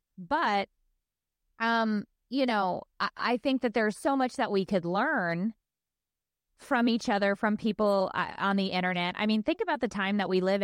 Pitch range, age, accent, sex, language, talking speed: 180-235 Hz, 20-39, American, female, English, 185 wpm